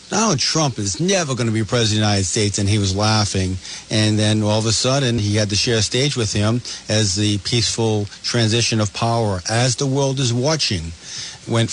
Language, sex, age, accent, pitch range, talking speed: English, male, 50-69, American, 105-125 Hz, 215 wpm